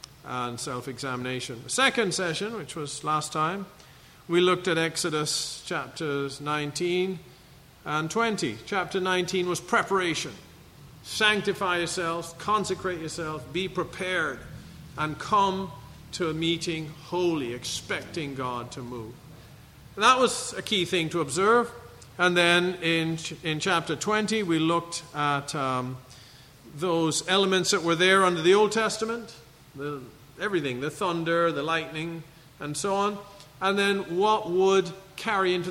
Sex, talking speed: male, 130 wpm